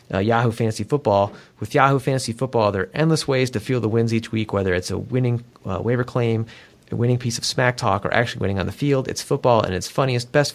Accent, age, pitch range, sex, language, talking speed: American, 30-49, 105-125 Hz, male, English, 245 wpm